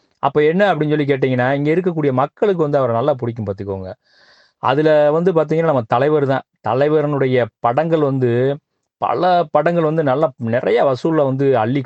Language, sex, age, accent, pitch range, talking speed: Tamil, male, 30-49, native, 120-150 Hz, 150 wpm